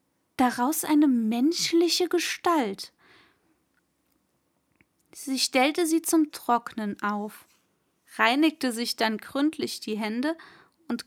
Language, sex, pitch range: German, female, 220-295 Hz